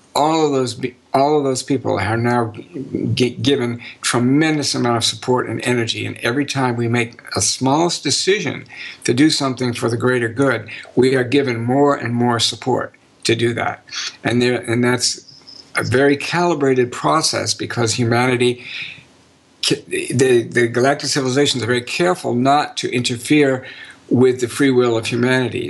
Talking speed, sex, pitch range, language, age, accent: 160 wpm, male, 120-140 Hz, English, 60-79, American